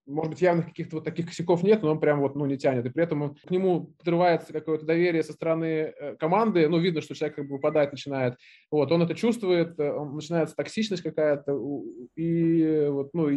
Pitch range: 140-170 Hz